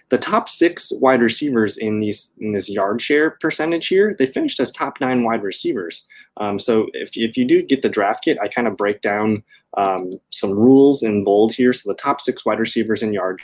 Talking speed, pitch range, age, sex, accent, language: 215 wpm, 110-155 Hz, 20-39, male, American, English